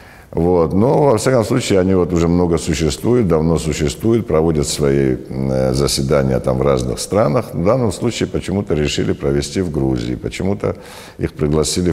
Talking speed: 150 wpm